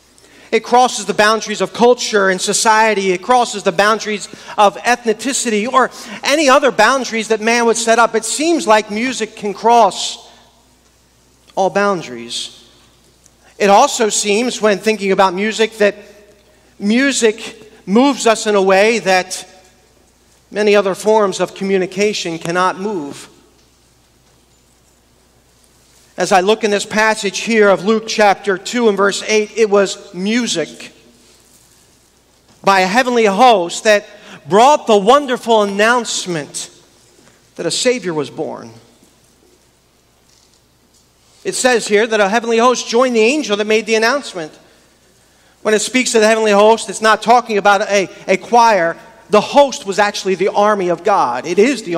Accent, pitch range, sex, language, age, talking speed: American, 190-225 Hz, male, English, 40-59, 140 wpm